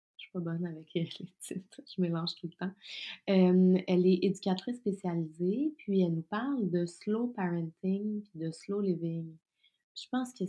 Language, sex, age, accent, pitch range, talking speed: French, female, 30-49, Canadian, 155-185 Hz, 185 wpm